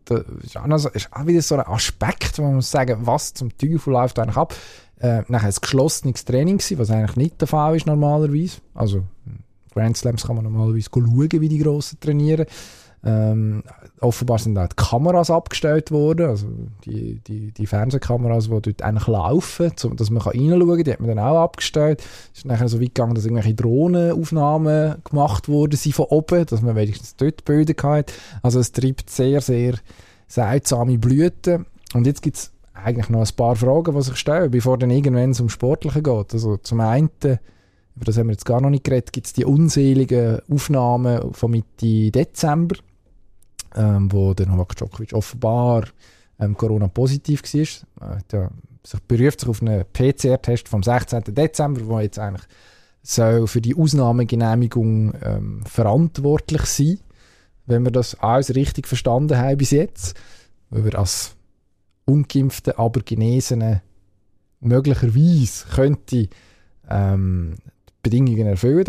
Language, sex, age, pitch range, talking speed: German, male, 20-39, 110-140 Hz, 165 wpm